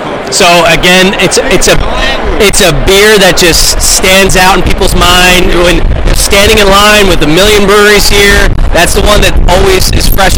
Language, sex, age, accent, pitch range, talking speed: English, male, 30-49, American, 165-195 Hz, 180 wpm